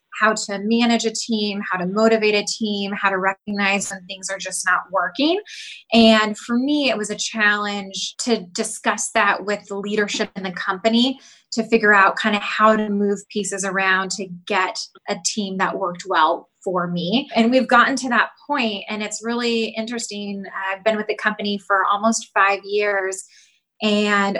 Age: 20-39